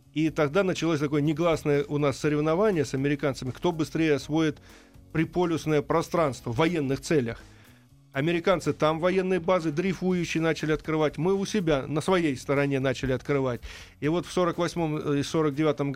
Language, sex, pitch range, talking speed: Russian, male, 140-175 Hz, 145 wpm